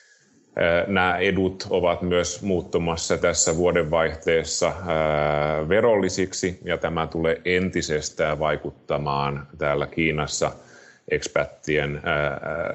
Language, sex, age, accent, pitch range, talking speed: Finnish, male, 30-49, native, 75-90 Hz, 75 wpm